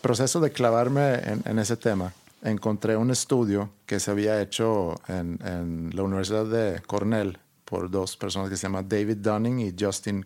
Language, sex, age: Spanish, male, 50-69